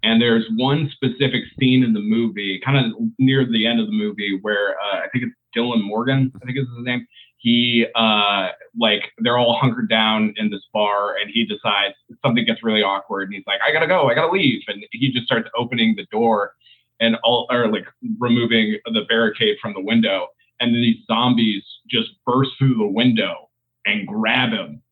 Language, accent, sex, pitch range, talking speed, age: English, American, male, 115-145 Hz, 200 wpm, 20-39